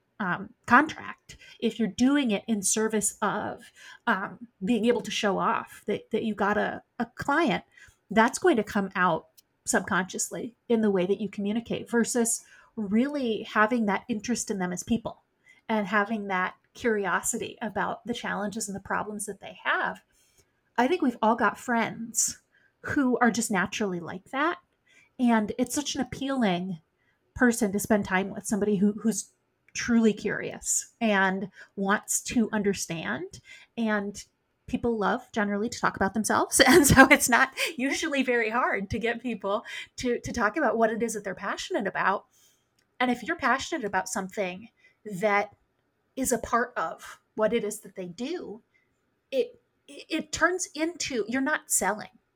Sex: female